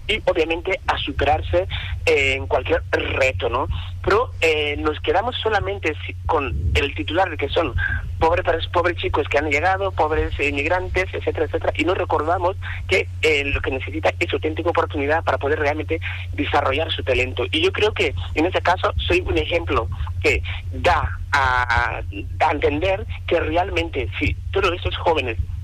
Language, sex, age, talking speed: Spanish, male, 40-59, 155 wpm